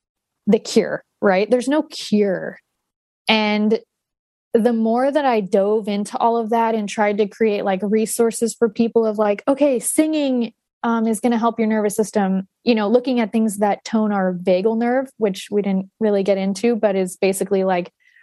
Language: English